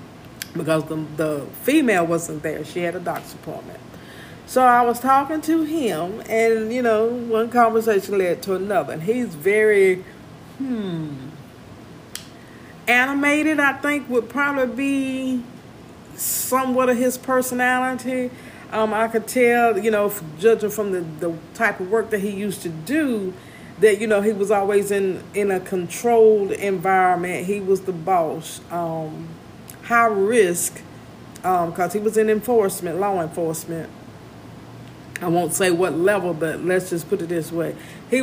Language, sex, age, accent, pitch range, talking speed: English, female, 50-69, American, 170-230 Hz, 150 wpm